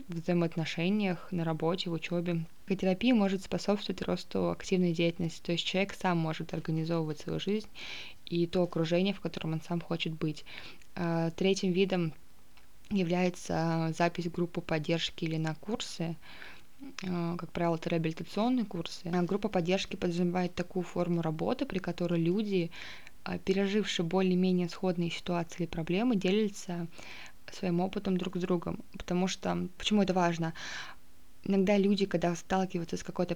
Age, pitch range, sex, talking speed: 20-39, 170-190 Hz, female, 135 wpm